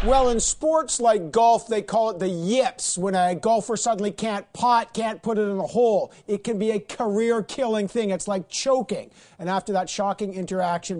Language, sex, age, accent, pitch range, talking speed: English, male, 50-69, American, 175-225 Hz, 195 wpm